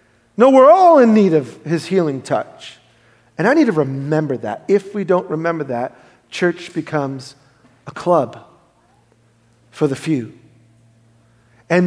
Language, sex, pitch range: English, male, 120-180 Hz